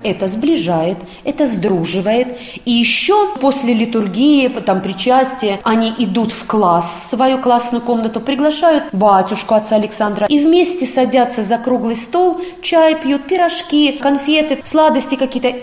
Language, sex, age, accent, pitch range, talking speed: Russian, female, 30-49, native, 195-275 Hz, 130 wpm